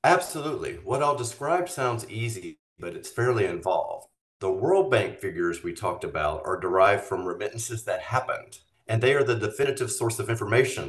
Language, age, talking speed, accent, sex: English, 40-59, 170 wpm, American, male